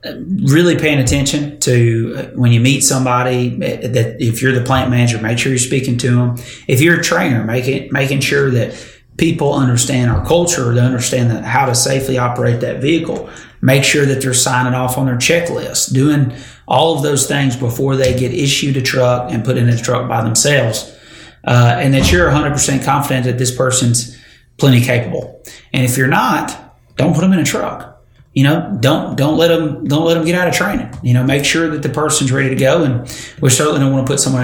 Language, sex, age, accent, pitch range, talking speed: English, male, 30-49, American, 125-140 Hz, 210 wpm